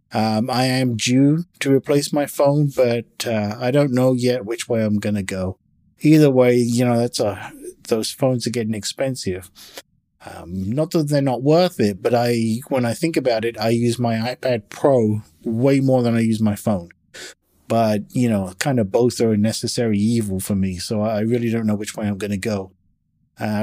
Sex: male